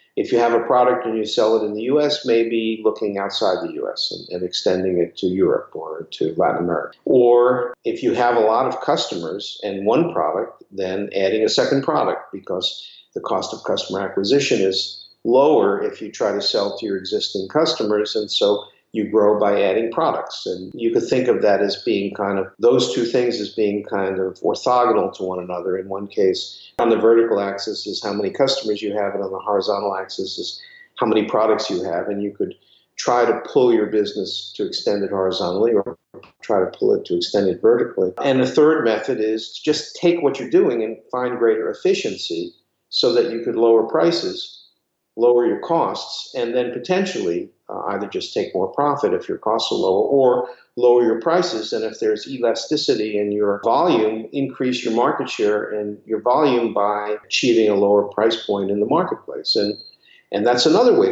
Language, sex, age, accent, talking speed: English, male, 50-69, American, 200 wpm